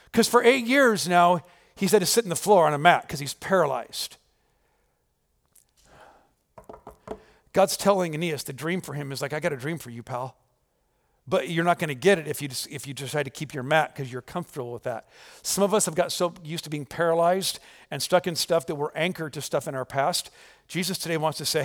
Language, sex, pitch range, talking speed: English, male, 150-220 Hz, 225 wpm